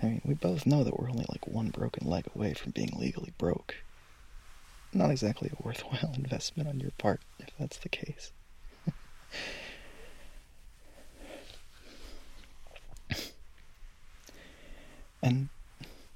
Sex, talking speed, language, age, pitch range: male, 110 wpm, English, 20-39, 85-140 Hz